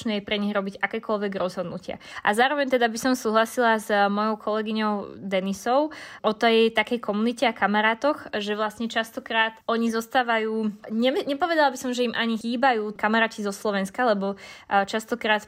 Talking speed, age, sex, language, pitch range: 145 wpm, 20-39, female, Slovak, 210-235 Hz